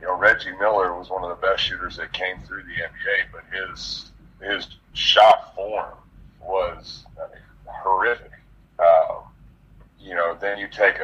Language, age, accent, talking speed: English, 40-59, American, 165 wpm